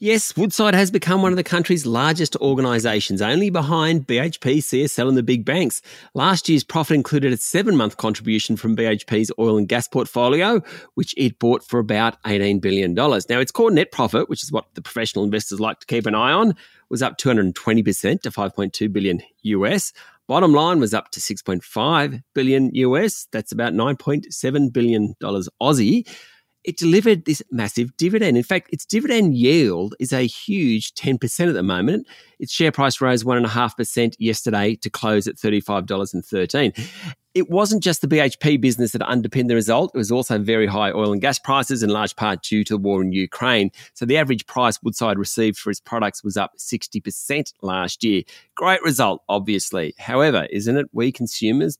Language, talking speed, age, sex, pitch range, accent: English, 175 wpm, 30-49, male, 110-145 Hz, Australian